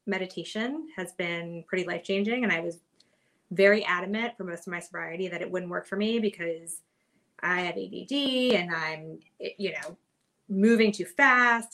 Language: English